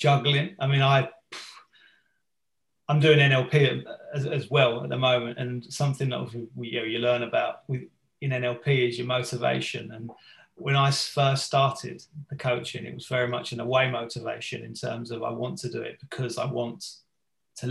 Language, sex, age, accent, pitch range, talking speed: English, male, 30-49, British, 125-145 Hz, 185 wpm